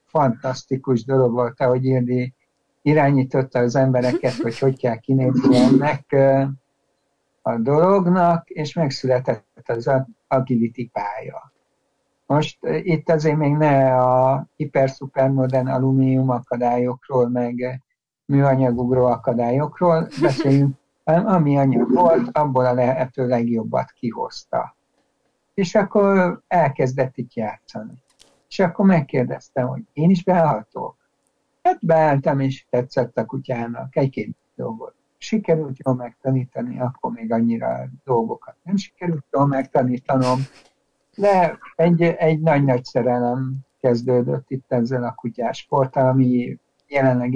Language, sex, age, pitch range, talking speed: Hungarian, male, 60-79, 125-150 Hz, 110 wpm